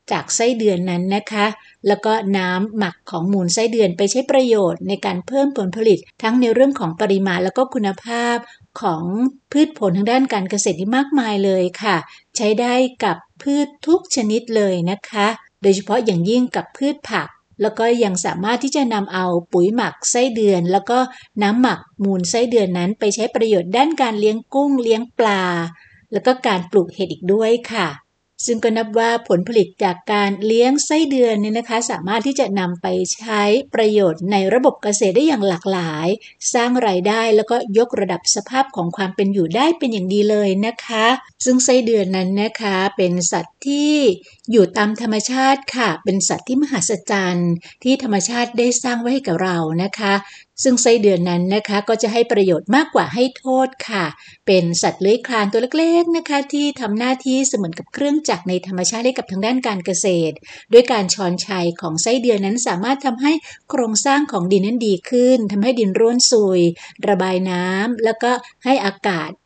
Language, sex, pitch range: English, female, 195-250 Hz